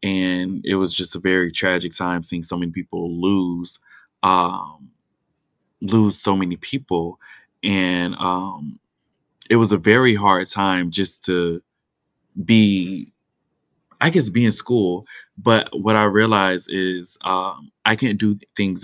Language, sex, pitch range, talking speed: English, male, 90-100 Hz, 140 wpm